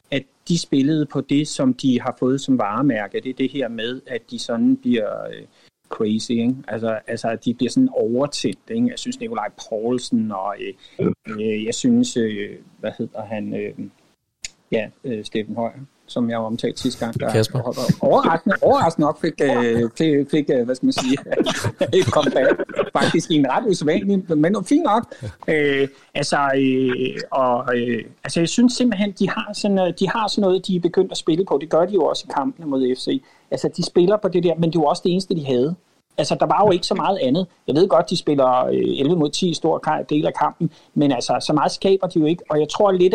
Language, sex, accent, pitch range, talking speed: Danish, male, native, 135-205 Hz, 210 wpm